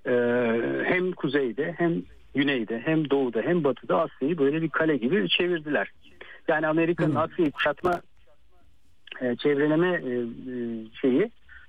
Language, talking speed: Turkish, 110 wpm